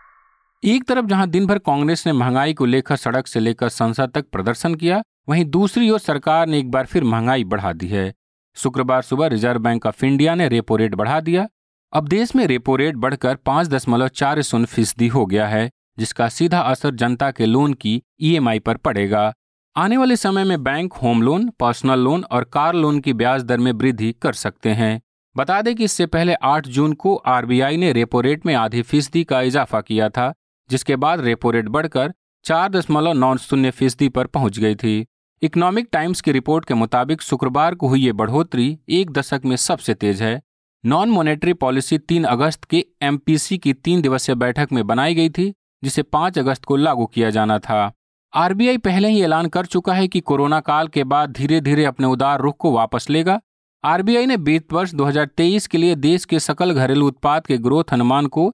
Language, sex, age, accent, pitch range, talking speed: Hindi, male, 40-59, native, 125-165 Hz, 195 wpm